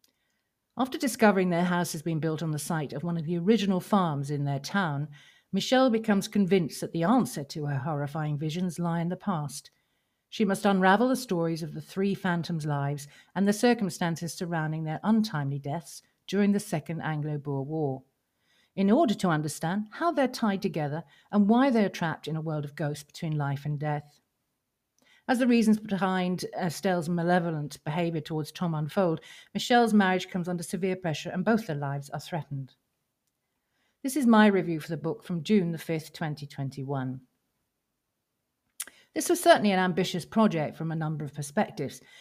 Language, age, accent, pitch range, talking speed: English, 50-69, British, 150-195 Hz, 170 wpm